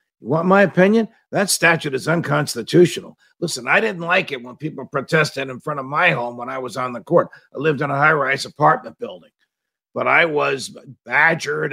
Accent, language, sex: American, English, male